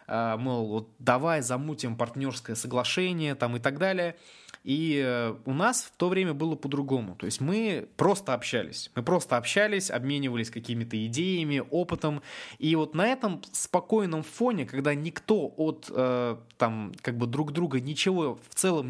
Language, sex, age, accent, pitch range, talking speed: Russian, male, 20-39, native, 115-155 Hz, 150 wpm